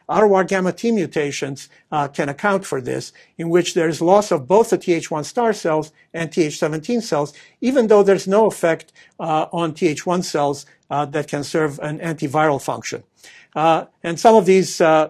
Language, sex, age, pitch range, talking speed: English, male, 50-69, 145-175 Hz, 180 wpm